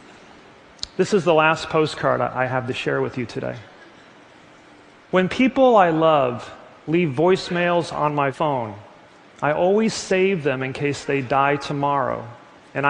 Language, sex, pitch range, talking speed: English, male, 140-175 Hz, 145 wpm